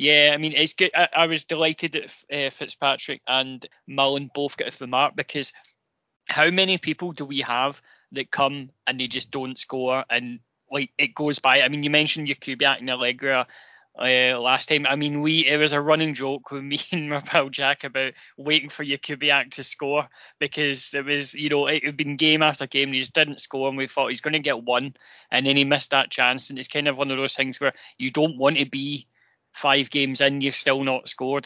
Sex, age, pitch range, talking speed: male, 20-39, 135-150 Hz, 225 wpm